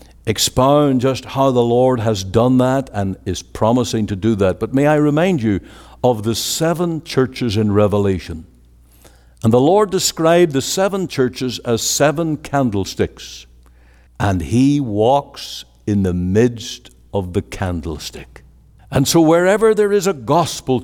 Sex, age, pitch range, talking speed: male, 60-79, 95-150 Hz, 145 wpm